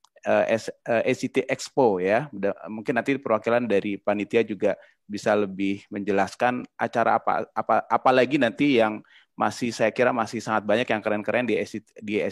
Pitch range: 105-130 Hz